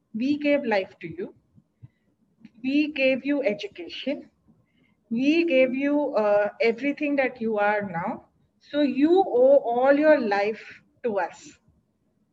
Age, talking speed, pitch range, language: 30-49, 125 wpm, 220-295 Hz, English